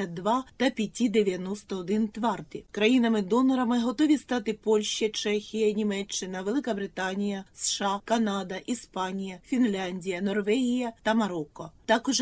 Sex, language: female, Ukrainian